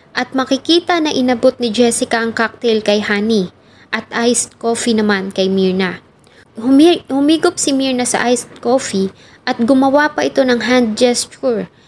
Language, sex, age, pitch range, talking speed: English, female, 20-39, 215-255 Hz, 150 wpm